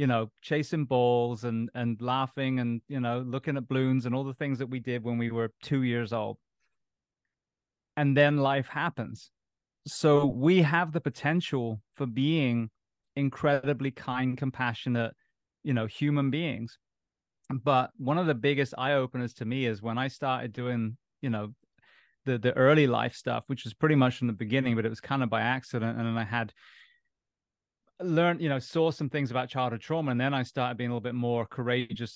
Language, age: English, 30-49